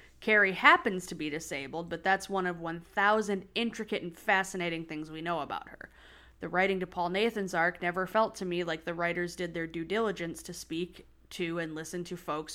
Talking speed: 200 wpm